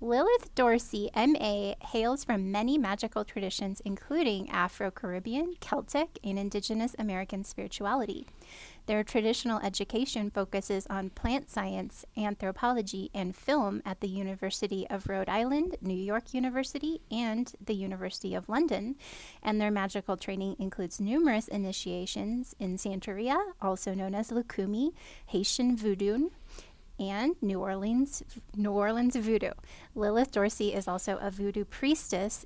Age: 10-29